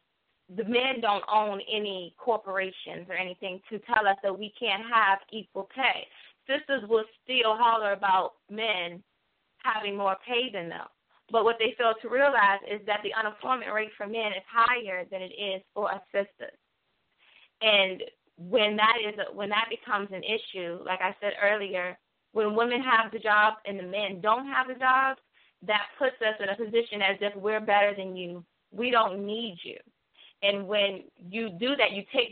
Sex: female